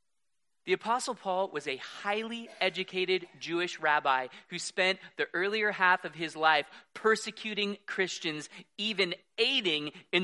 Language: English